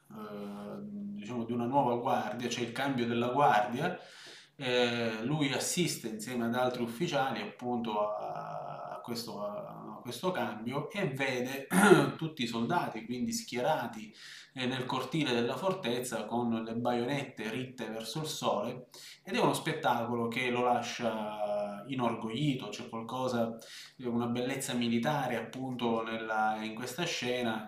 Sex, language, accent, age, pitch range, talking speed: male, Italian, native, 20-39, 115-140 Hz, 140 wpm